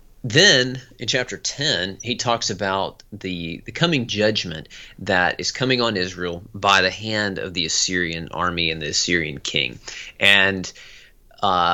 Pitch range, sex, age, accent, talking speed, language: 95-130 Hz, male, 30-49, American, 150 wpm, English